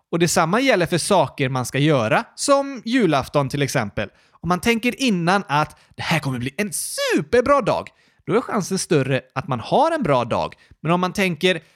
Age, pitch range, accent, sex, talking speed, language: 30-49, 130-205 Hz, native, male, 195 wpm, Swedish